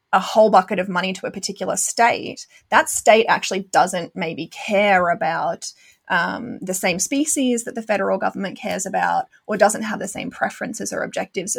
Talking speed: 175 wpm